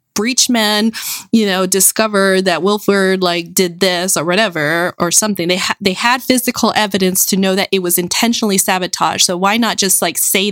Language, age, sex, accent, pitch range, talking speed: English, 20-39, female, American, 185-220 Hz, 185 wpm